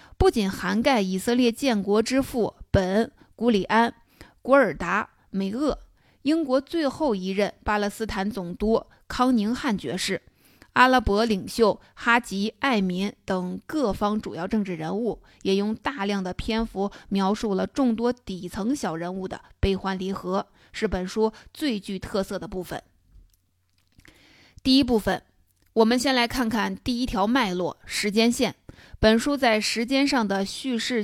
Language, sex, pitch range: Chinese, female, 195-240 Hz